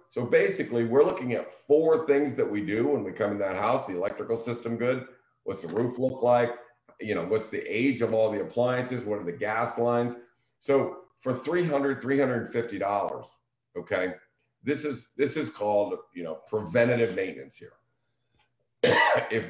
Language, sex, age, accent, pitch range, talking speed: English, male, 50-69, American, 100-125 Hz, 165 wpm